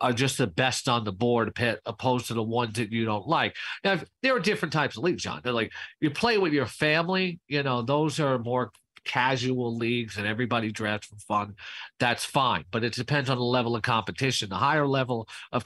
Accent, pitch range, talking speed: American, 115-135 Hz, 220 wpm